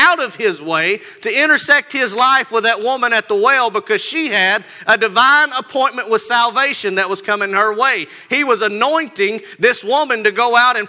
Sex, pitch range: male, 230-300 Hz